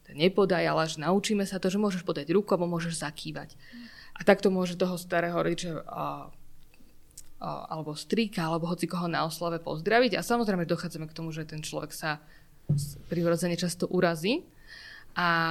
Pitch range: 165-190 Hz